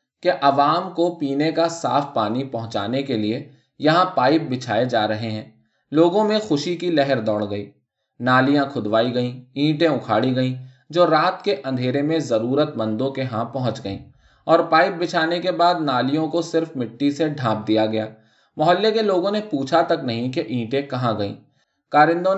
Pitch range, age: 125-170 Hz, 20-39